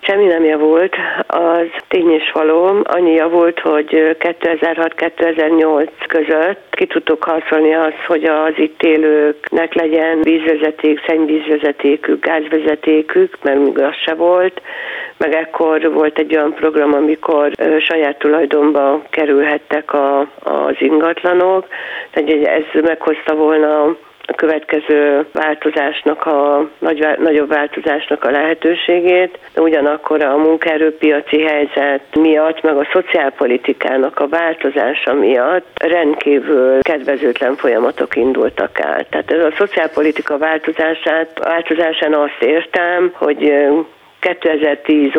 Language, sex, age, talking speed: Hungarian, female, 50-69, 110 wpm